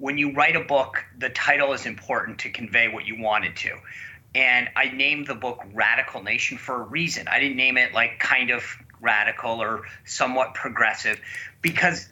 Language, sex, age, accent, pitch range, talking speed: English, male, 30-49, American, 135-180 Hz, 185 wpm